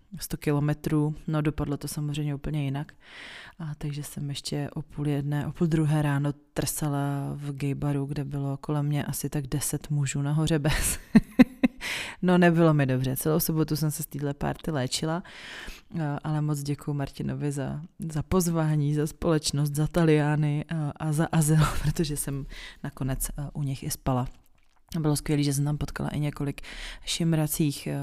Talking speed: 165 wpm